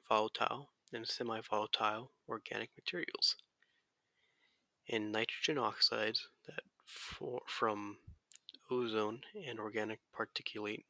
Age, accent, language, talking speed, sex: 20-39, American, English, 85 wpm, male